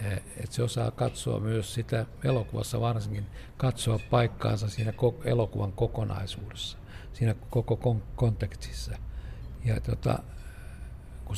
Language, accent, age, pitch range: Finnish, native, 60-79, 105-120 Hz